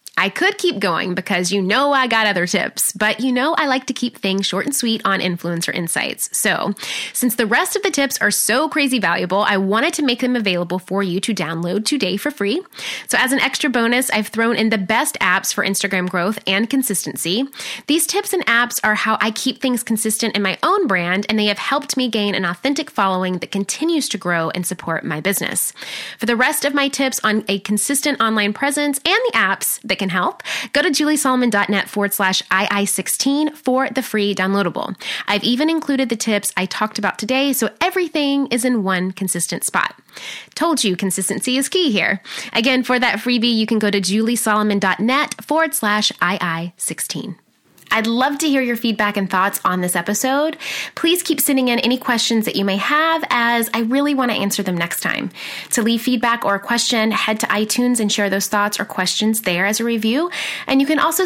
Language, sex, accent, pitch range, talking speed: English, female, American, 200-270 Hz, 205 wpm